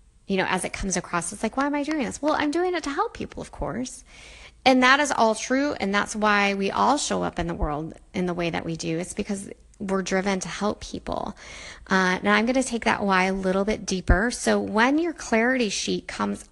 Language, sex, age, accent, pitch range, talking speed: English, female, 20-39, American, 185-230 Hz, 245 wpm